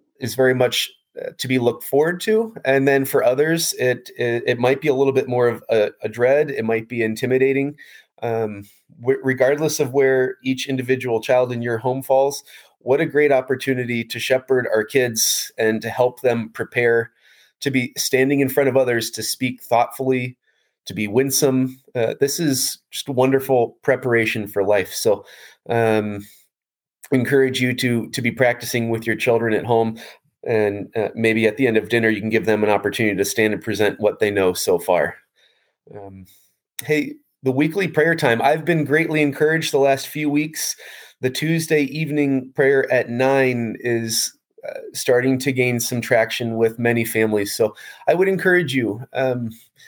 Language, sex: English, male